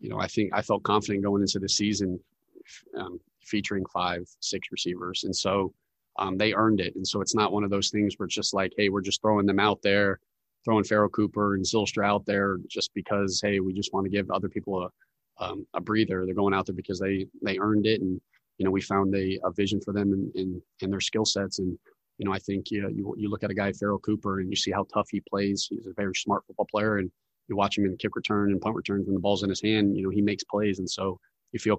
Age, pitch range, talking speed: 30-49, 95-105 Hz, 270 wpm